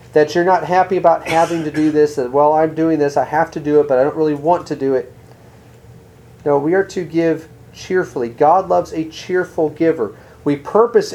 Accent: American